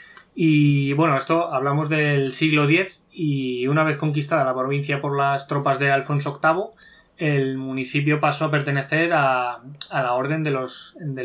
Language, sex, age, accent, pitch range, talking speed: Spanish, male, 20-39, Spanish, 130-155 Hz, 165 wpm